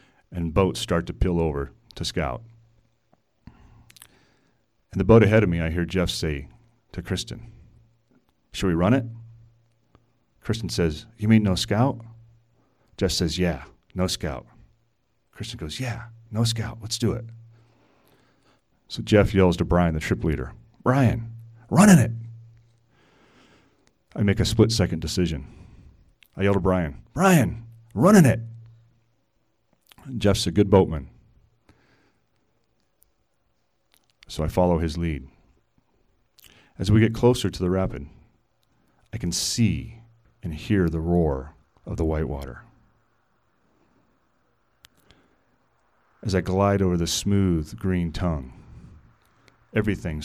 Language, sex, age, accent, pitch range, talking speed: English, male, 40-59, American, 85-115 Hz, 120 wpm